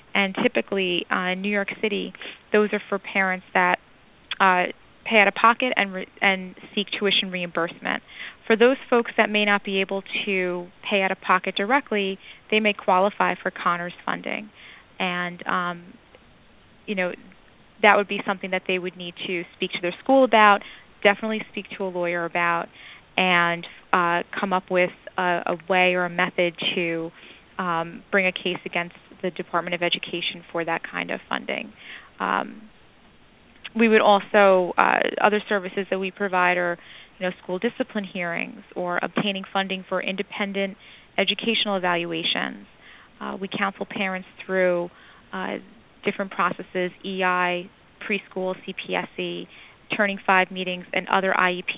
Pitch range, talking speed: 180-205 Hz, 155 wpm